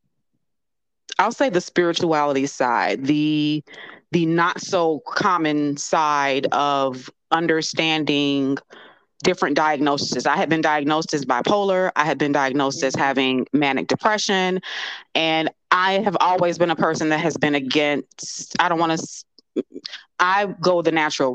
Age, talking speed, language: 30-49, 135 wpm, English